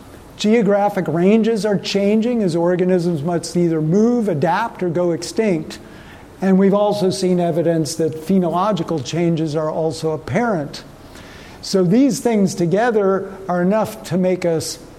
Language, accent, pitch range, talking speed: English, American, 160-205 Hz, 130 wpm